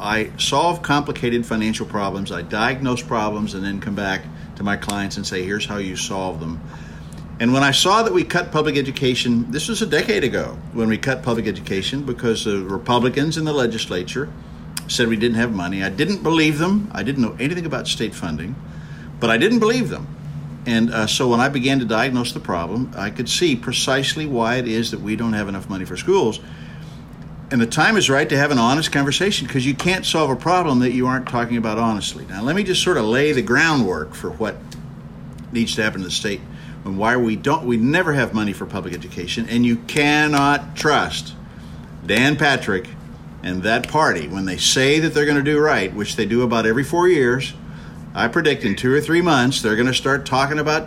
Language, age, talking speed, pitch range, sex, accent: English, 50-69, 215 wpm, 100-145 Hz, male, American